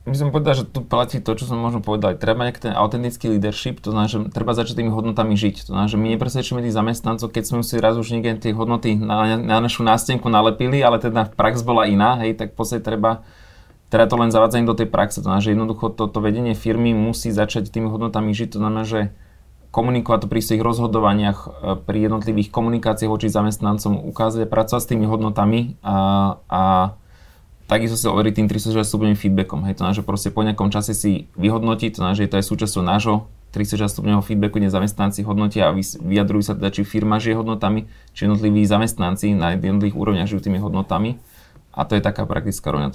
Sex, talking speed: male, 200 wpm